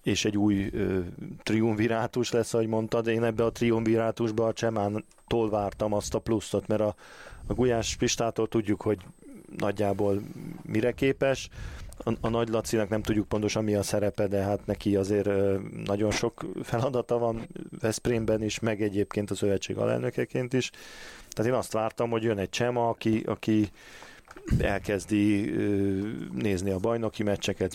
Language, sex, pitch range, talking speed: Hungarian, male, 100-115 Hz, 150 wpm